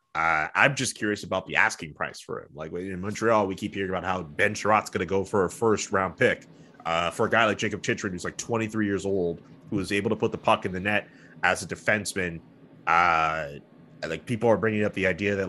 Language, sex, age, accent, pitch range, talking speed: English, male, 30-49, American, 90-105 Hz, 240 wpm